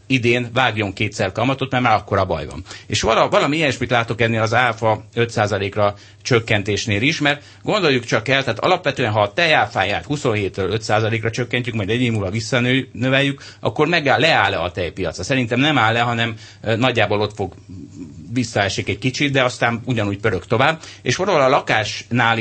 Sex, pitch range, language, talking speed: male, 105-130 Hz, Hungarian, 165 wpm